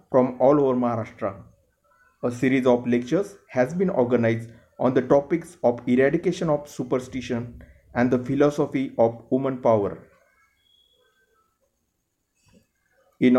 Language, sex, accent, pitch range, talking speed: Marathi, male, native, 115-140 Hz, 110 wpm